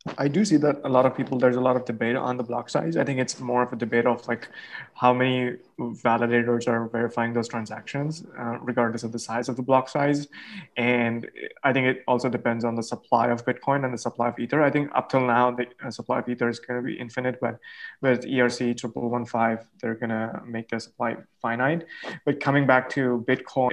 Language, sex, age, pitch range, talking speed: English, male, 20-39, 120-135 Hz, 225 wpm